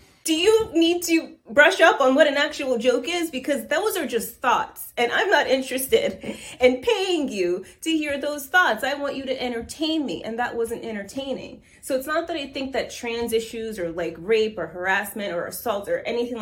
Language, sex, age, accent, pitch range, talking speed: English, female, 30-49, American, 220-330 Hz, 205 wpm